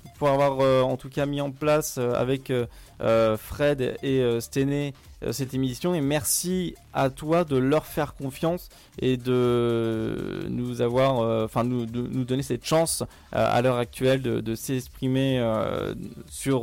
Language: French